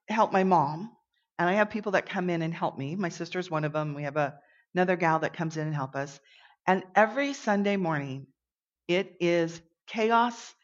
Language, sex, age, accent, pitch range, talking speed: English, female, 40-59, American, 155-215 Hz, 205 wpm